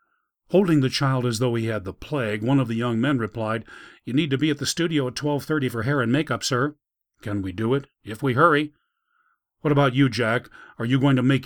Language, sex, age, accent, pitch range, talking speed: English, male, 40-59, American, 115-145 Hz, 235 wpm